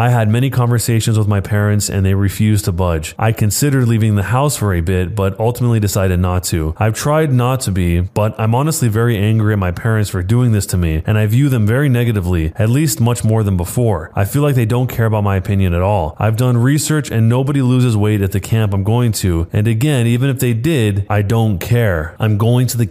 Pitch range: 100-120 Hz